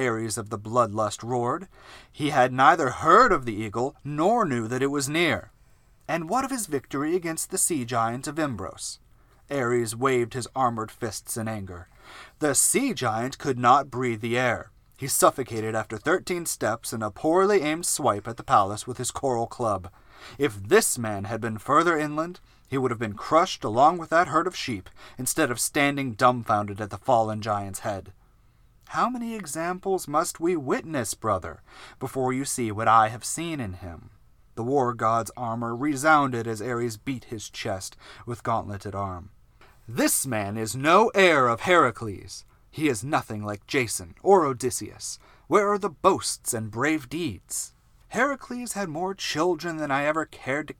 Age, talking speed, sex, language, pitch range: 30-49, 175 wpm, male, English, 110-150 Hz